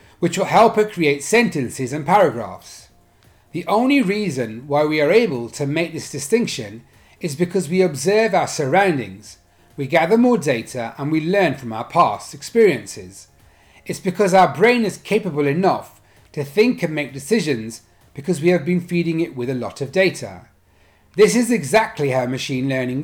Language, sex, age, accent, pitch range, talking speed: English, male, 30-49, British, 115-190 Hz, 170 wpm